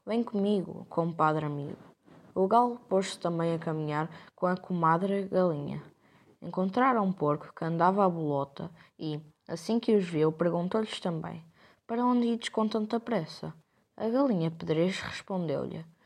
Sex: female